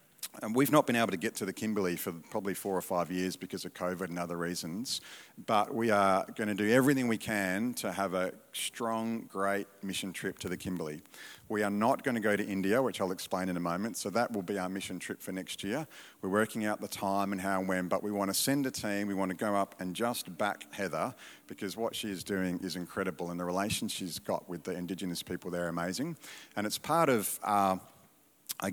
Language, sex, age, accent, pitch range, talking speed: English, male, 40-59, Australian, 90-105 Hz, 240 wpm